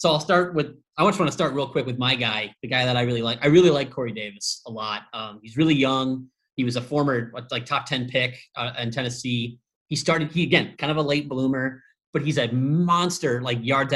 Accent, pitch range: American, 125-145 Hz